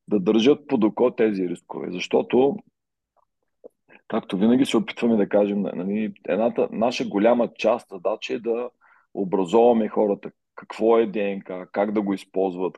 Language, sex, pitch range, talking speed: Bulgarian, male, 95-115 Hz, 140 wpm